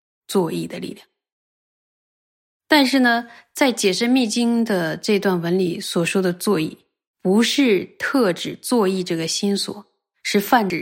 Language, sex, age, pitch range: Chinese, female, 20-39, 175-225 Hz